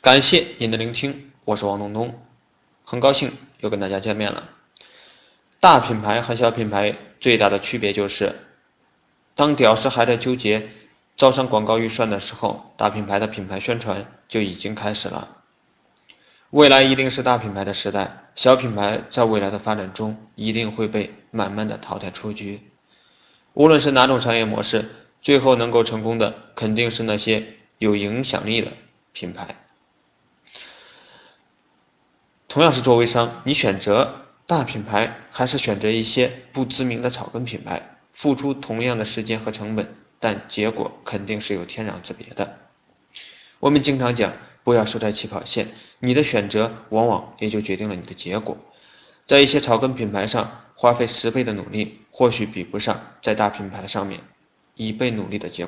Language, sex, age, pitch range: Chinese, male, 20-39, 105-125 Hz